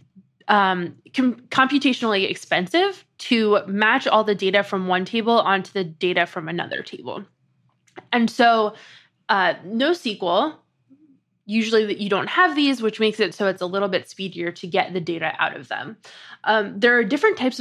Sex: female